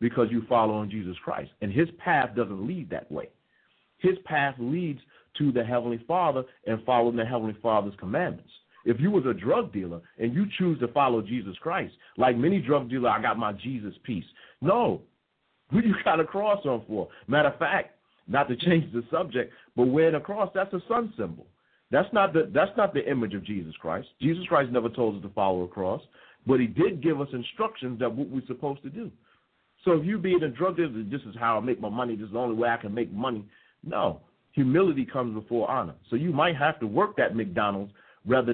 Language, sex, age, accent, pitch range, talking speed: English, male, 40-59, American, 110-145 Hz, 220 wpm